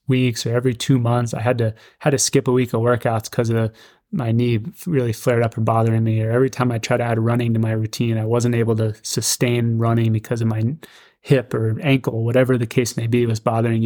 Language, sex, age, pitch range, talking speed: English, male, 20-39, 115-125 Hz, 245 wpm